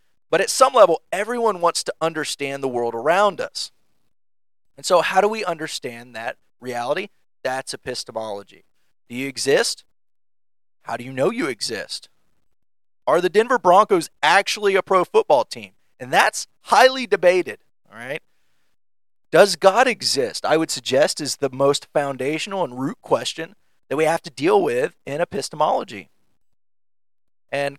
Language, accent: English, American